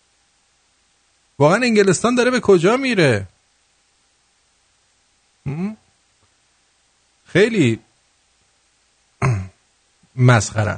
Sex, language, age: male, English, 50-69